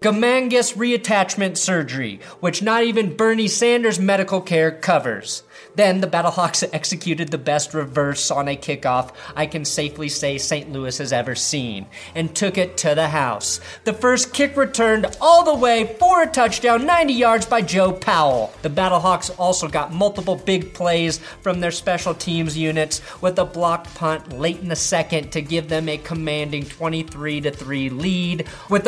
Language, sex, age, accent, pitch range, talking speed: English, male, 30-49, American, 155-205 Hz, 170 wpm